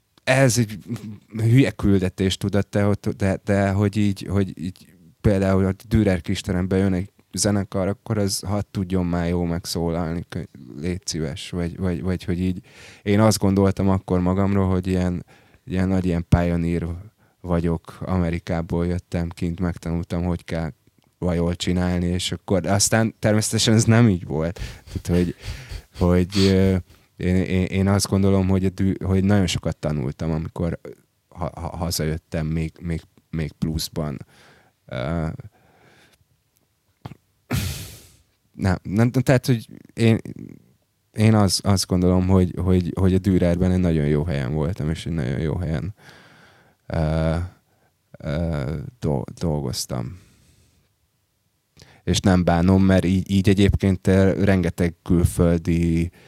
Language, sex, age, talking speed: Hungarian, male, 20-39, 125 wpm